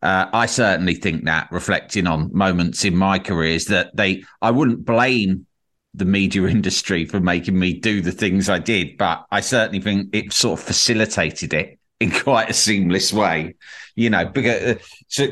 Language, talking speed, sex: English, 175 wpm, male